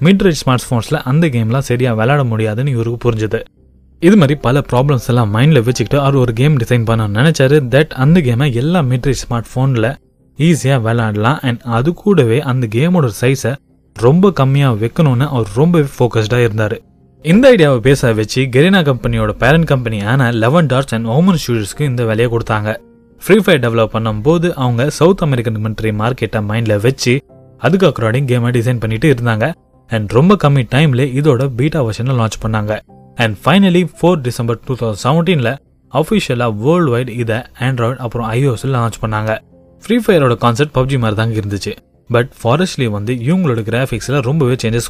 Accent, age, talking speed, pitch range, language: native, 20-39, 150 wpm, 115-145 Hz, Tamil